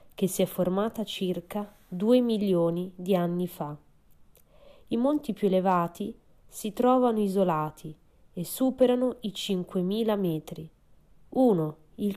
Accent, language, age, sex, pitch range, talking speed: native, Italian, 20-39, female, 170-225 Hz, 120 wpm